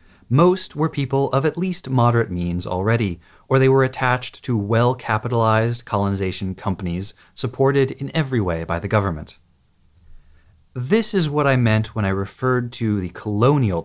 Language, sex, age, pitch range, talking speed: English, male, 30-49, 95-130 Hz, 150 wpm